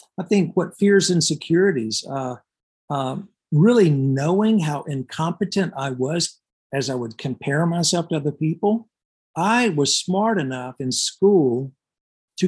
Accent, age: American, 50-69